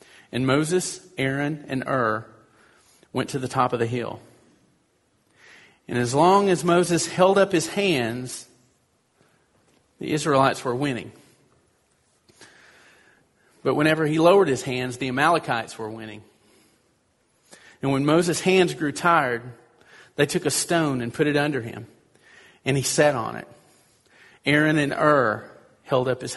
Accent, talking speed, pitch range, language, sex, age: American, 140 wpm, 125-155 Hz, English, male, 40-59